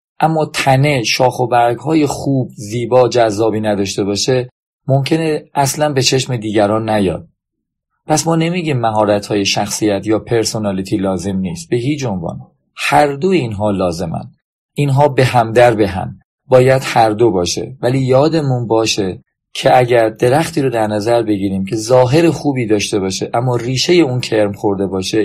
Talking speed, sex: 155 wpm, male